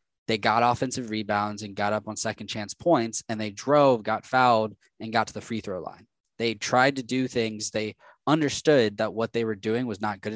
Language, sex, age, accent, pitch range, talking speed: English, male, 20-39, American, 105-125 Hz, 220 wpm